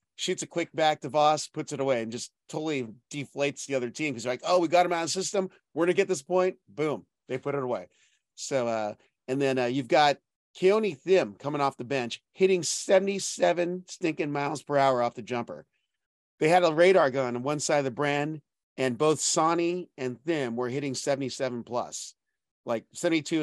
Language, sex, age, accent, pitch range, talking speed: English, male, 40-59, American, 125-165 Hz, 205 wpm